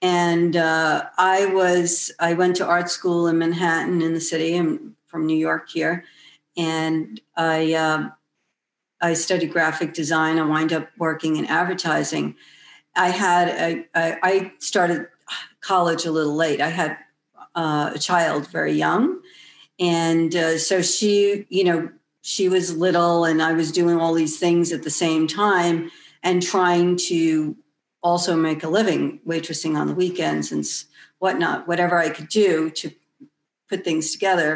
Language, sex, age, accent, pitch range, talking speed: English, female, 50-69, American, 160-185 Hz, 155 wpm